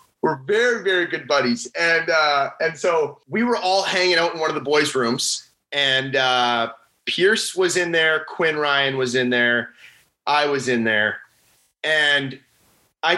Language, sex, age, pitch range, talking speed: English, male, 20-39, 135-210 Hz, 170 wpm